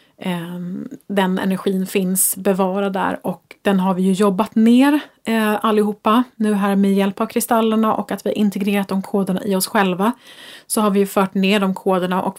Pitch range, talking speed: 190-235 Hz, 185 wpm